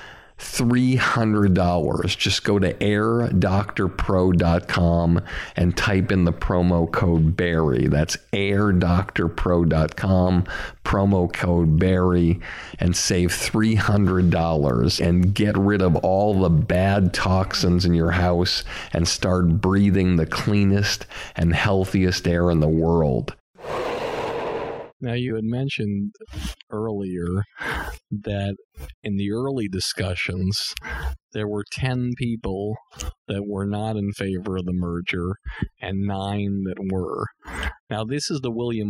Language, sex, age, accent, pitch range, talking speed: English, male, 50-69, American, 90-110 Hz, 110 wpm